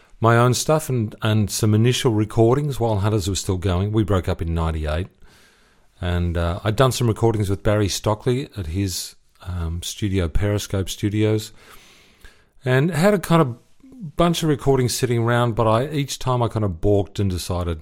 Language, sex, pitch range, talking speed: English, male, 85-110 Hz, 175 wpm